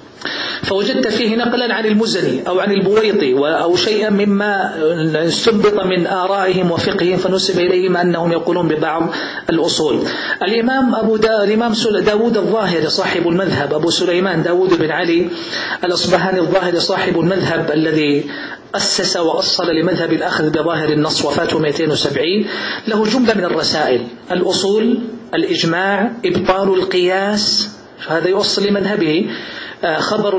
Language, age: Arabic, 40-59